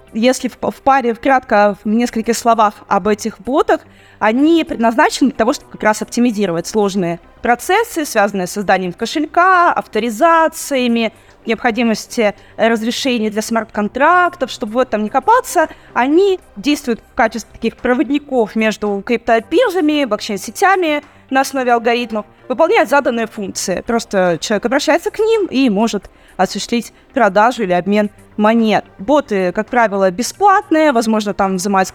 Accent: native